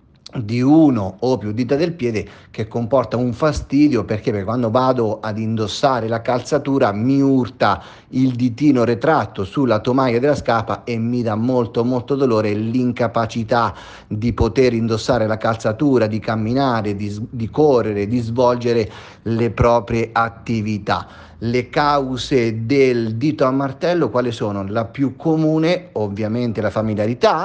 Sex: male